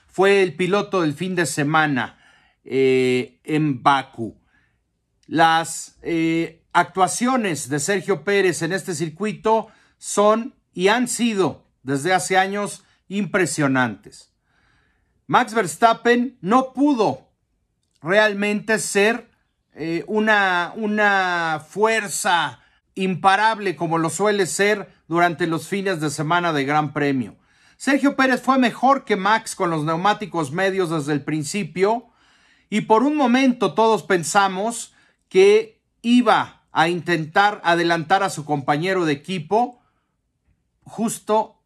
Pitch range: 155-215 Hz